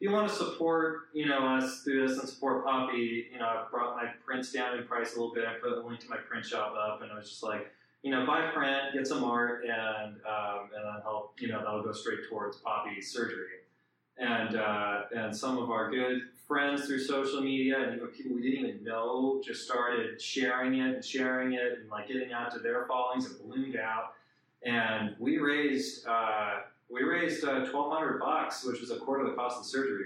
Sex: male